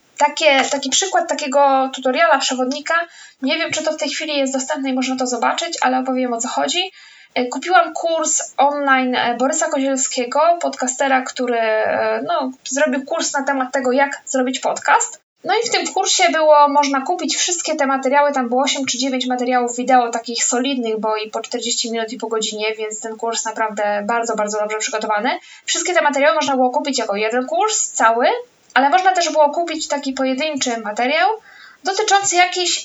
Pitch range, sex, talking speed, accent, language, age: 230-300 Hz, female, 175 wpm, native, Polish, 10-29